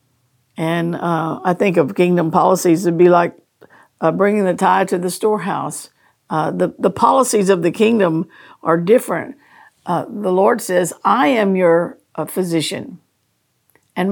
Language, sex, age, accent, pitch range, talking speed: English, female, 50-69, American, 175-210 Hz, 150 wpm